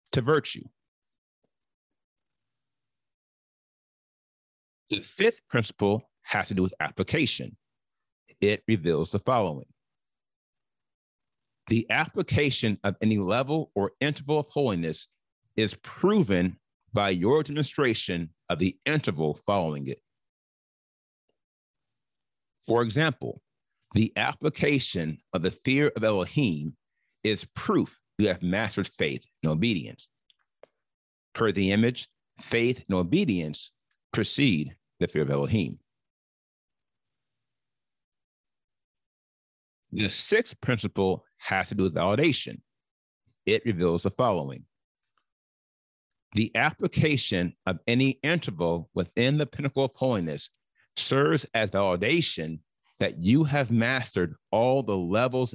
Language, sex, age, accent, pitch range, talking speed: English, male, 40-59, American, 90-130 Hz, 100 wpm